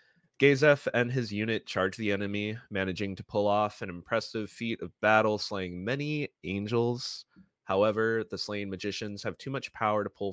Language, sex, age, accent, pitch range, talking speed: English, male, 20-39, American, 95-115 Hz, 170 wpm